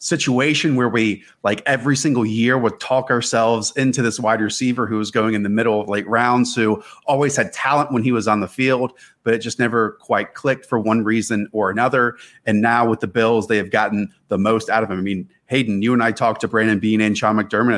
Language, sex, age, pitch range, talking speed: English, male, 30-49, 110-130 Hz, 235 wpm